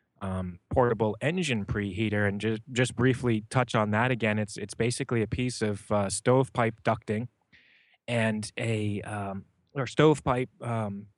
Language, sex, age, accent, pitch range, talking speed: English, male, 30-49, American, 105-125 Hz, 150 wpm